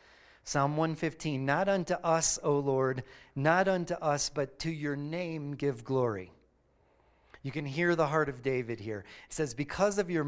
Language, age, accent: English, 30-49, American